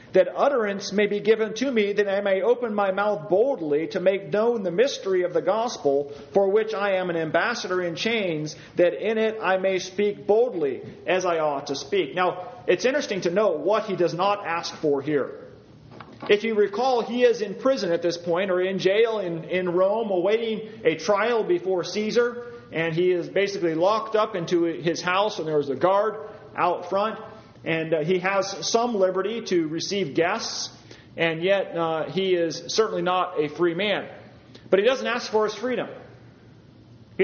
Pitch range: 170-215 Hz